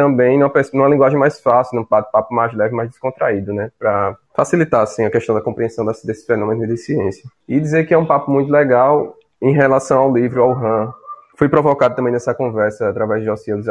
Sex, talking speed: male, 195 wpm